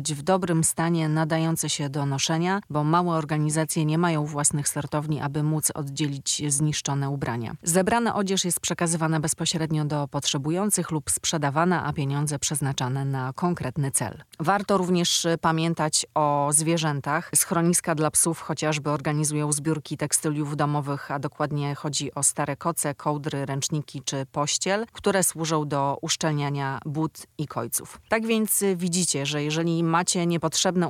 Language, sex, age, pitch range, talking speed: Polish, female, 30-49, 145-170 Hz, 140 wpm